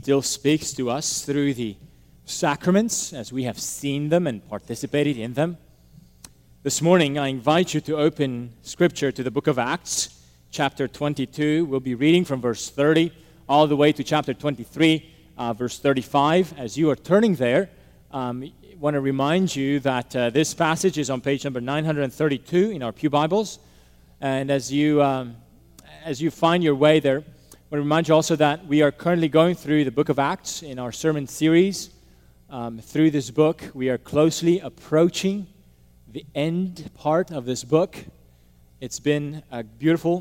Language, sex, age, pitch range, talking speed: English, male, 30-49, 120-155 Hz, 175 wpm